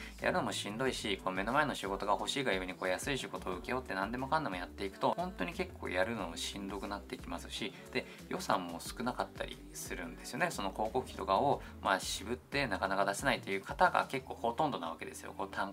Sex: male